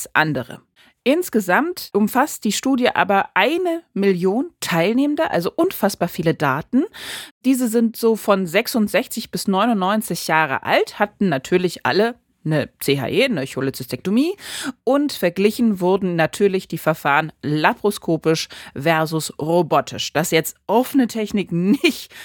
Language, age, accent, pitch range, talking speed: German, 30-49, German, 160-225 Hz, 115 wpm